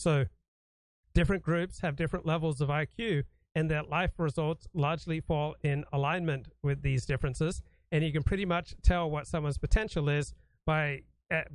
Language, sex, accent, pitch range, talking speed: English, male, American, 145-175 Hz, 160 wpm